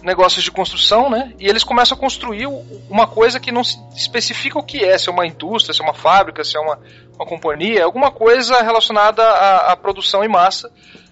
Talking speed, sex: 210 wpm, male